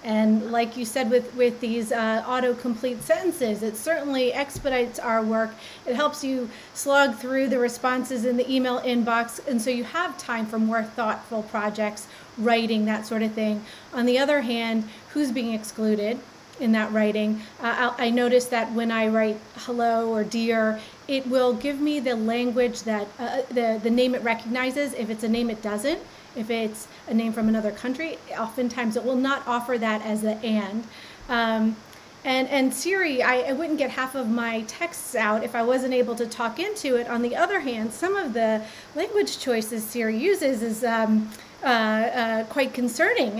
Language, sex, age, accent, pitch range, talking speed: English, female, 30-49, American, 225-255 Hz, 185 wpm